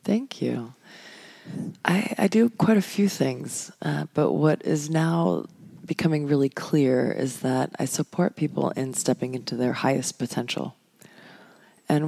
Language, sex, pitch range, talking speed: English, female, 130-170 Hz, 145 wpm